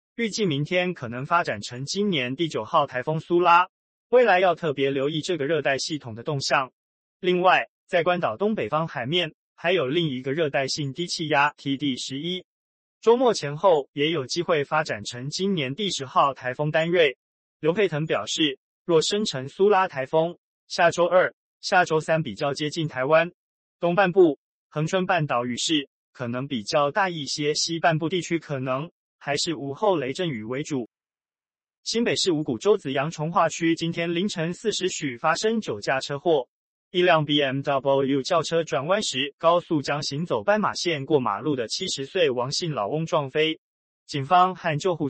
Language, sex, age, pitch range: Chinese, male, 20-39, 140-180 Hz